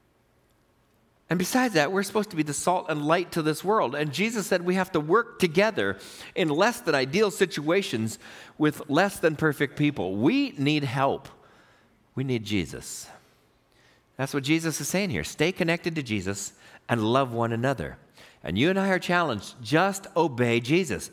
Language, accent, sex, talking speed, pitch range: English, American, male, 175 wpm, 125-185 Hz